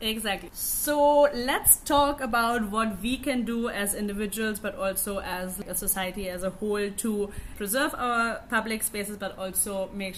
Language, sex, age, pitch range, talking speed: English, female, 20-39, 195-225 Hz, 160 wpm